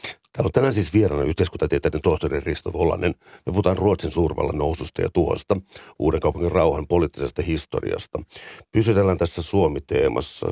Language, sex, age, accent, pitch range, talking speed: Finnish, male, 60-79, native, 85-95 Hz, 135 wpm